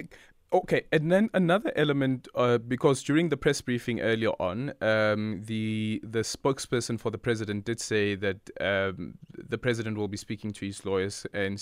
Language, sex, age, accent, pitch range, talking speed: English, male, 20-39, South African, 105-125 Hz, 170 wpm